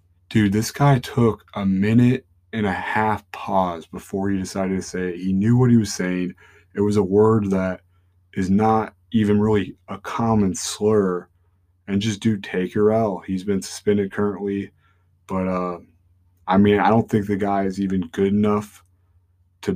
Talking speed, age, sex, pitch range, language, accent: 175 wpm, 20-39, male, 90-105 Hz, English, American